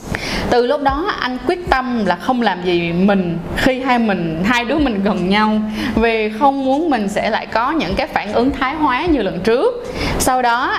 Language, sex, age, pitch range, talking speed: Vietnamese, female, 20-39, 205-265 Hz, 205 wpm